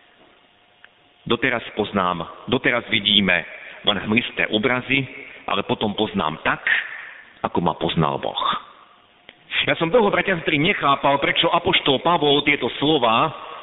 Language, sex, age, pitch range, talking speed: Slovak, male, 50-69, 120-185 Hz, 110 wpm